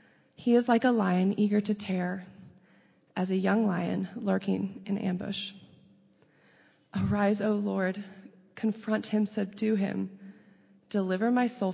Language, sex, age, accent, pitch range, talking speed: English, female, 20-39, American, 185-210 Hz, 130 wpm